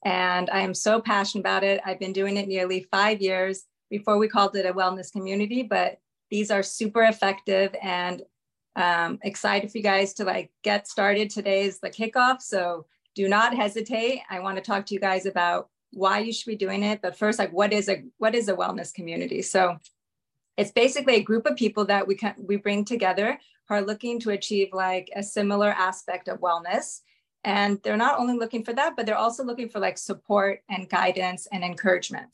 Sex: female